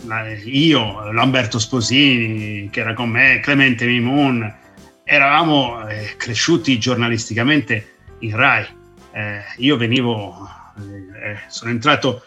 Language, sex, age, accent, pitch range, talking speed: Italian, male, 50-69, native, 120-150 Hz, 90 wpm